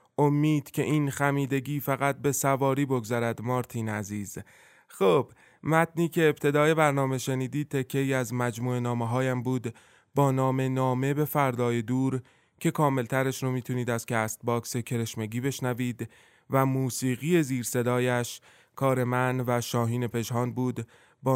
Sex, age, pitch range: male, 20-39, 120-140 Hz